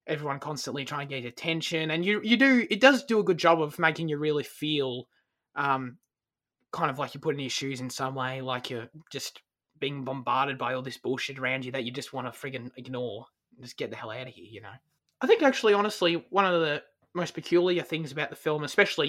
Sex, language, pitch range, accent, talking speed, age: male, English, 135-175 Hz, Australian, 235 wpm, 20-39